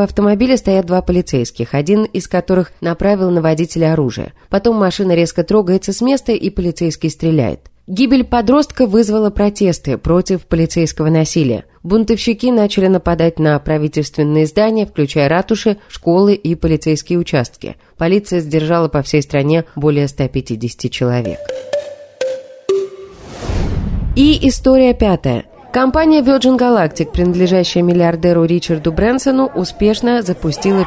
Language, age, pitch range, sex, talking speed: Russian, 20-39, 155-230 Hz, female, 115 wpm